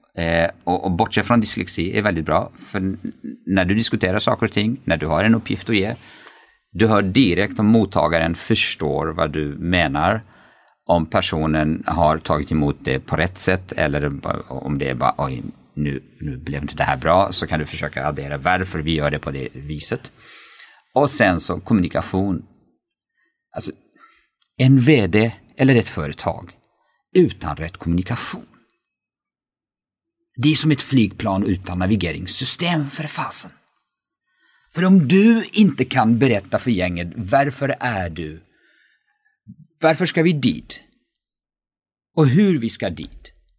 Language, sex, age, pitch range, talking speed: English, male, 50-69, 90-150 Hz, 150 wpm